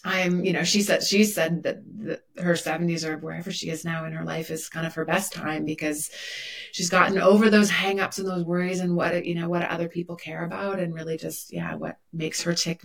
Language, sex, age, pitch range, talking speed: English, female, 30-49, 160-190 Hz, 240 wpm